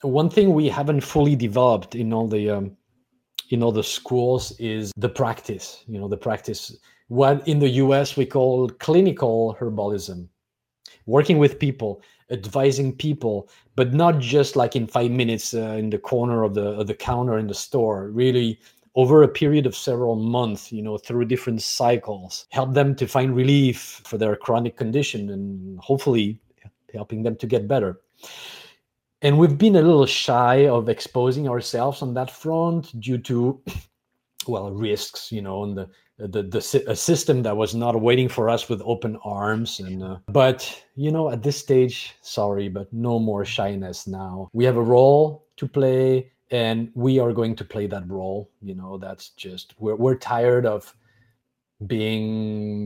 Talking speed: 170 wpm